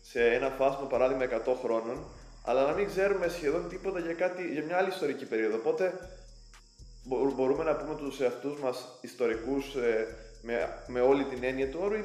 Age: 20-39